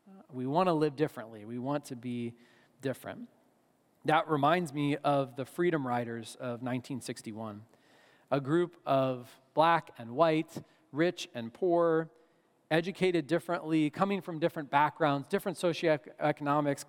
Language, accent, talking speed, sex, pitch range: English, American, 130 wpm, male, 135-170 Hz